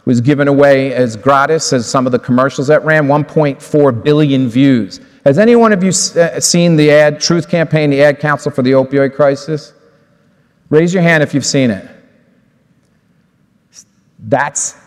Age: 40-59